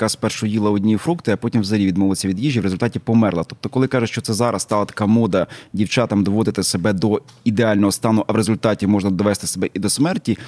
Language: Ukrainian